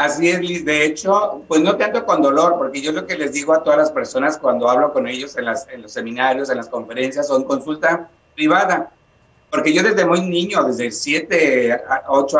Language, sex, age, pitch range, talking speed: Spanish, male, 50-69, 135-175 Hz, 220 wpm